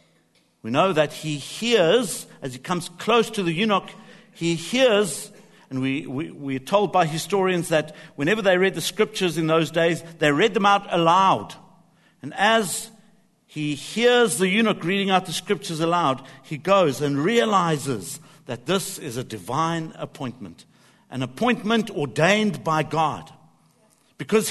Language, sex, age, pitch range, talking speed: English, male, 60-79, 135-185 Hz, 145 wpm